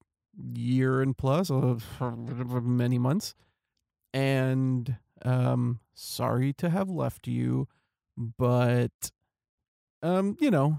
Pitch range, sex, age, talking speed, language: 120-140 Hz, male, 40-59, 95 wpm, English